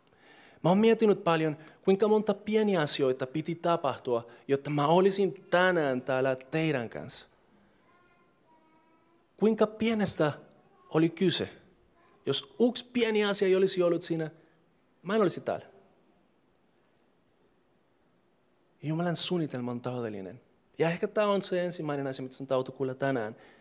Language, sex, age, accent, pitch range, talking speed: Finnish, male, 30-49, native, 130-190 Hz, 120 wpm